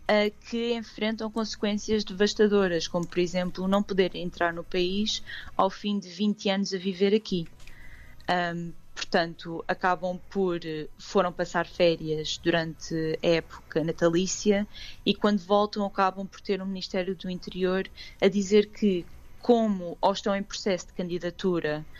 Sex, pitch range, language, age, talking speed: female, 170-200 Hz, Portuguese, 20-39, 140 wpm